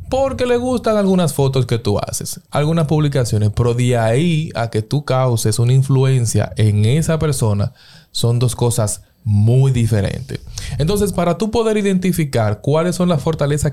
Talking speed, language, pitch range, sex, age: 155 wpm, Spanish, 115-155 Hz, male, 20-39